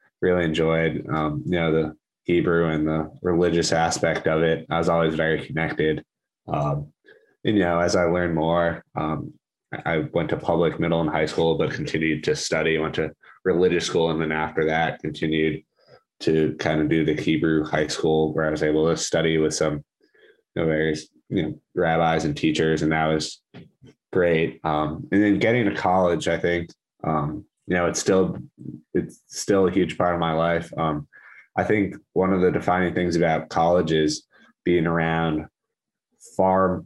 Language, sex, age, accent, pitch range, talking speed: English, male, 20-39, American, 80-85 Hz, 180 wpm